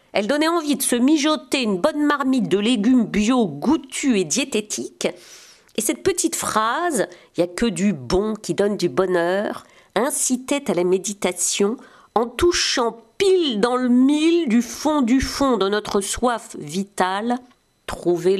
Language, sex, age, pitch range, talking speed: French, female, 50-69, 190-260 Hz, 155 wpm